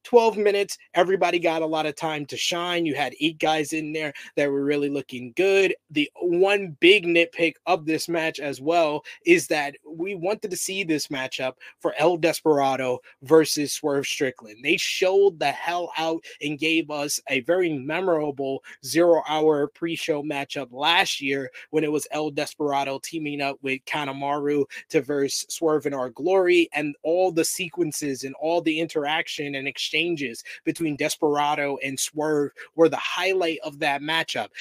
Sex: male